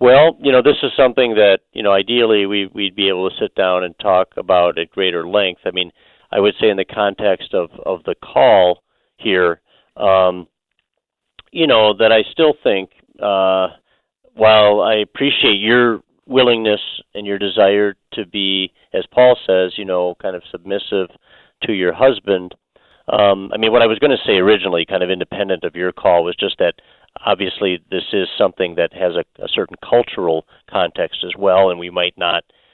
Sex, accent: male, American